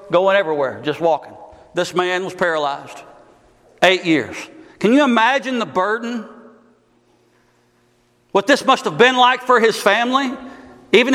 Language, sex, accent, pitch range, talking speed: English, male, American, 125-205 Hz, 135 wpm